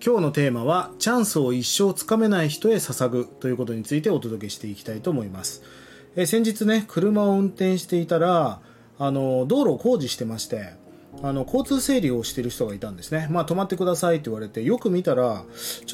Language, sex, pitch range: Japanese, male, 120-185 Hz